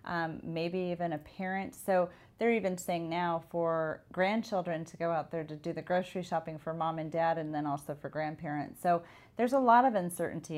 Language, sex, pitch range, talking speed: English, female, 155-185 Hz, 205 wpm